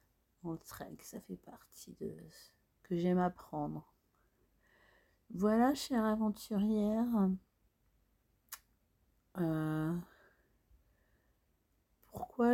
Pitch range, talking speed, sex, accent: 165-200 Hz, 60 wpm, female, French